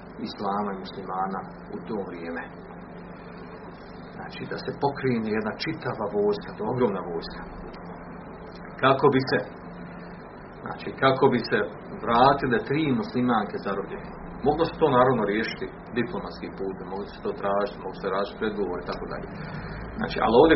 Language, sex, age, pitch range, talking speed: Croatian, male, 40-59, 110-160 Hz, 135 wpm